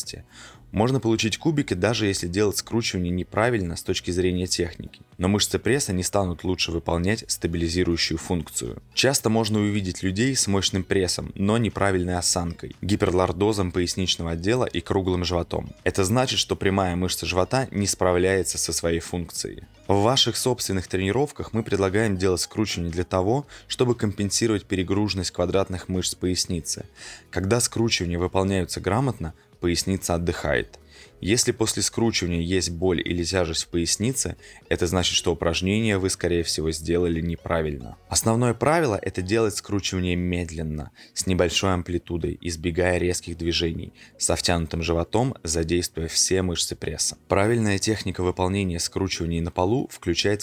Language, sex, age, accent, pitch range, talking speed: Russian, male, 20-39, native, 85-105 Hz, 135 wpm